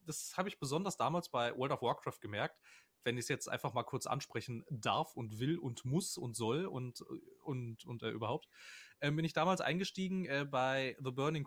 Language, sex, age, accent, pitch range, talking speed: German, male, 30-49, German, 130-170 Hz, 200 wpm